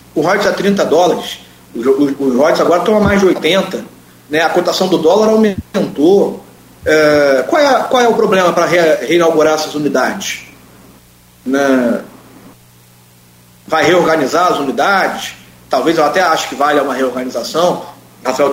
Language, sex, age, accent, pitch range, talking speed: Portuguese, male, 40-59, Brazilian, 125-195 Hz, 145 wpm